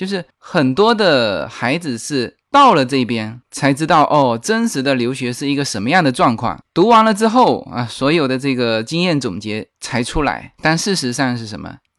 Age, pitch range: 20-39, 125-185 Hz